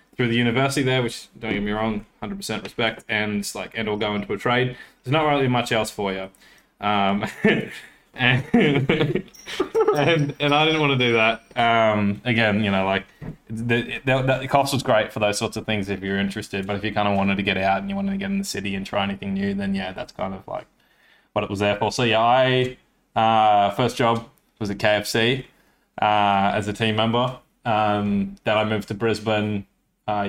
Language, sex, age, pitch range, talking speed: English, male, 20-39, 105-125 Hz, 220 wpm